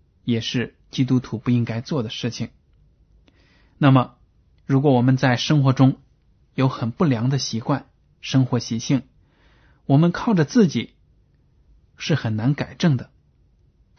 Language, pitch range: Chinese, 115-135 Hz